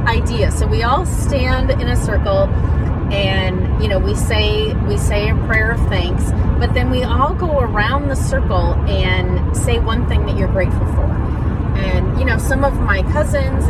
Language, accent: English, American